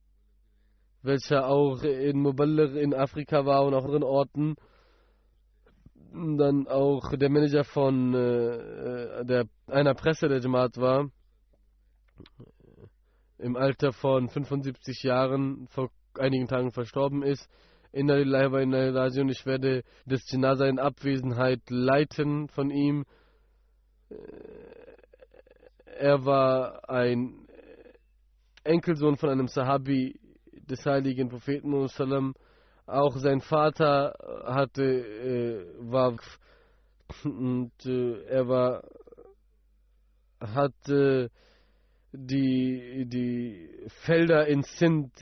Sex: male